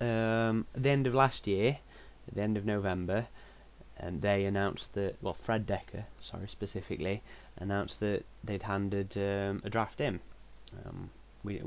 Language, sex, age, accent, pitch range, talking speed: English, male, 20-39, British, 90-110 Hz, 160 wpm